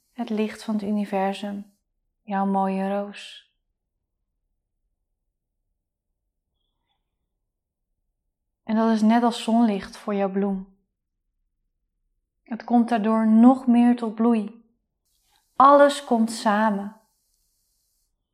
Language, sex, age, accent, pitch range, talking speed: Dutch, female, 20-39, Dutch, 190-230 Hz, 90 wpm